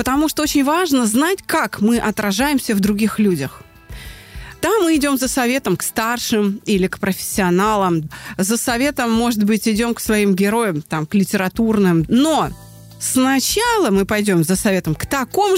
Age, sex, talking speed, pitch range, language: 30-49, female, 155 wpm, 195-275 Hz, Russian